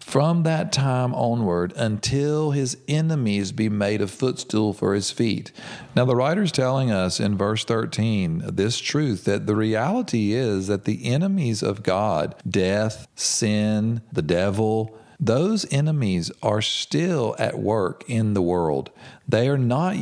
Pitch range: 105-140 Hz